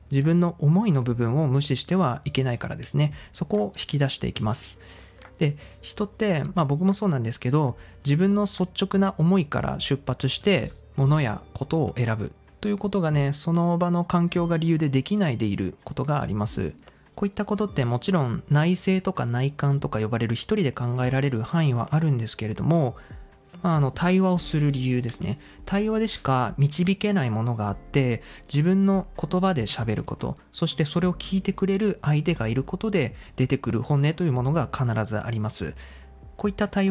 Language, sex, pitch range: Japanese, male, 120-175 Hz